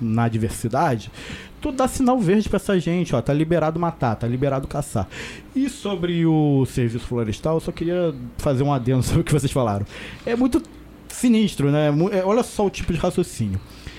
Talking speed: 185 wpm